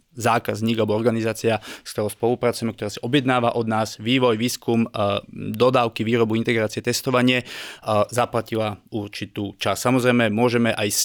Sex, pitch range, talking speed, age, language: male, 110-125 Hz, 130 wpm, 20-39, Slovak